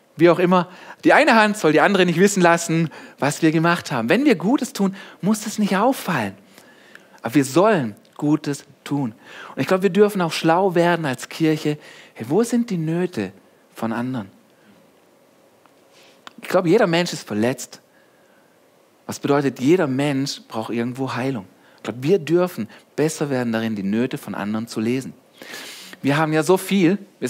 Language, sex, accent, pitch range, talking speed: German, male, German, 135-180 Hz, 170 wpm